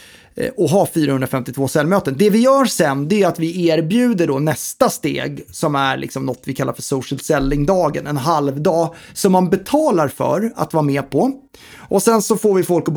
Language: Swedish